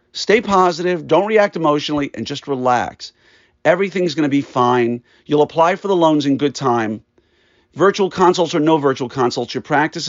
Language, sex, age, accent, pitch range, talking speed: English, male, 50-69, American, 130-175 Hz, 165 wpm